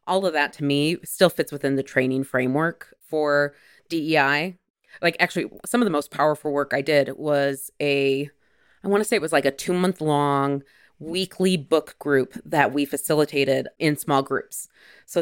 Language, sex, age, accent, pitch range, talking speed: English, female, 20-39, American, 140-175 Hz, 175 wpm